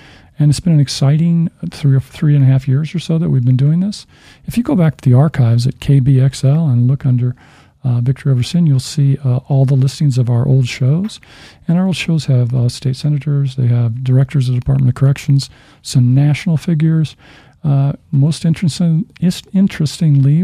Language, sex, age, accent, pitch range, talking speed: English, male, 50-69, American, 130-150 Hz, 200 wpm